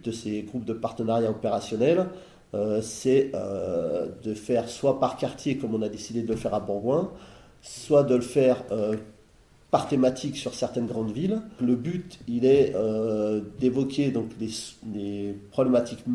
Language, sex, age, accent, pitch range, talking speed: French, male, 40-59, French, 110-135 Hz, 165 wpm